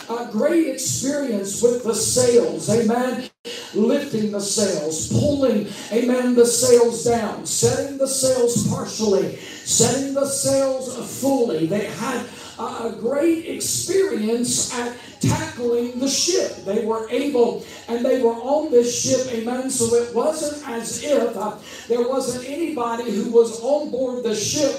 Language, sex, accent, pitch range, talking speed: English, male, American, 230-260 Hz, 140 wpm